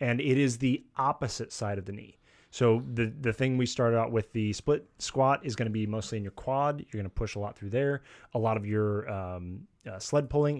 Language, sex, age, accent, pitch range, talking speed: English, male, 30-49, American, 105-130 Hz, 250 wpm